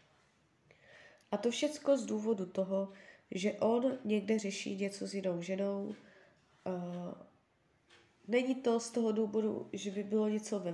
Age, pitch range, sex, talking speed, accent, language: 20-39, 190-215 Hz, female, 135 wpm, native, Czech